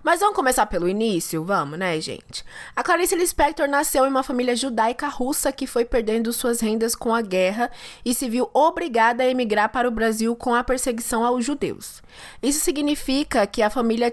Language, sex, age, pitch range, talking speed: Portuguese, female, 20-39, 220-275 Hz, 185 wpm